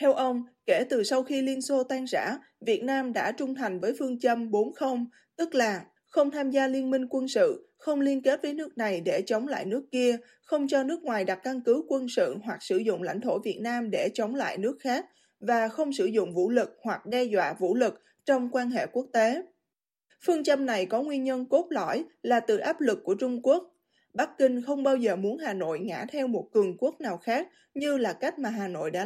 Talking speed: 235 wpm